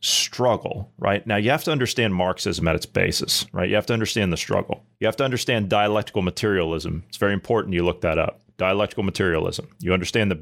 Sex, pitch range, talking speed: male, 100-120 Hz, 205 wpm